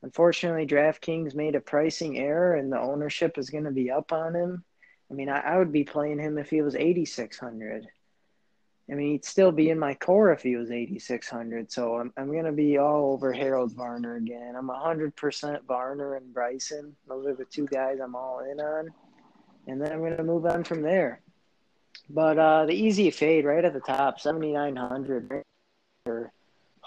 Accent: American